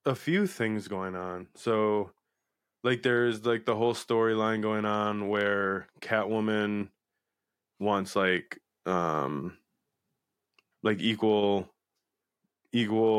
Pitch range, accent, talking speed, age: 100-115 Hz, American, 100 wpm, 20-39